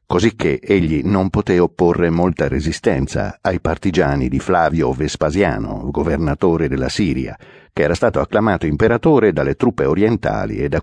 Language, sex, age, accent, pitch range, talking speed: Italian, male, 60-79, native, 70-95 Hz, 140 wpm